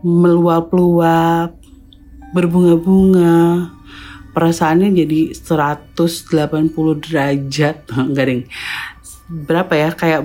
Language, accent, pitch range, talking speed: Indonesian, native, 140-170 Hz, 65 wpm